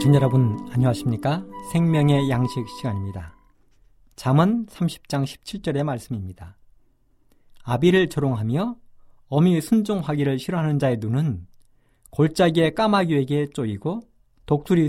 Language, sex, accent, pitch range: Korean, male, native, 115-180 Hz